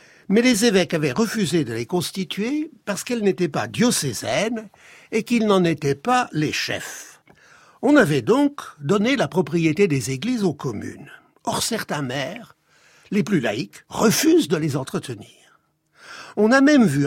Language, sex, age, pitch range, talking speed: French, male, 60-79, 155-225 Hz, 155 wpm